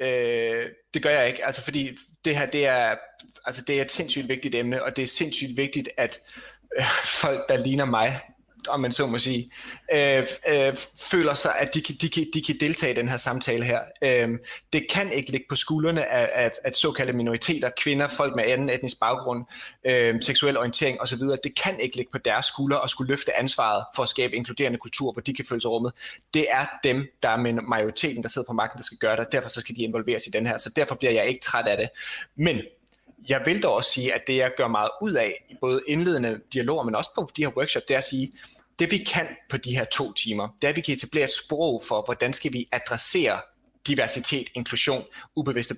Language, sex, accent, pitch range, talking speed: Danish, male, native, 120-145 Hz, 235 wpm